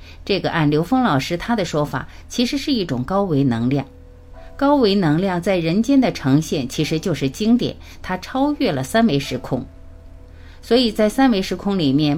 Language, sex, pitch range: Chinese, female, 135-220 Hz